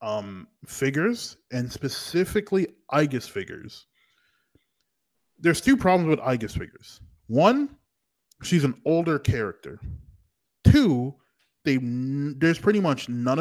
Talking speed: 105 wpm